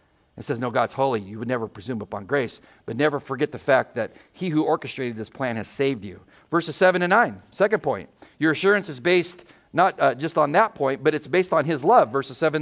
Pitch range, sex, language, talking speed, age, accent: 145-230 Hz, male, English, 235 wpm, 50-69, American